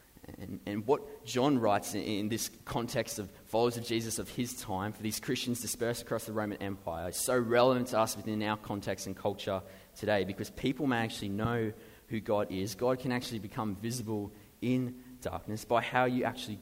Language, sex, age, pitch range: English, male, 20-39, 95-115 Hz